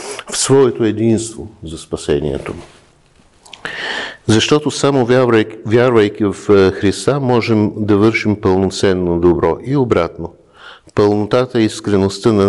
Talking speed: 95 wpm